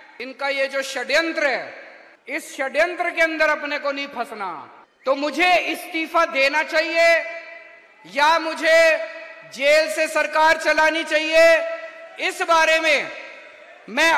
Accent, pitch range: native, 275-320 Hz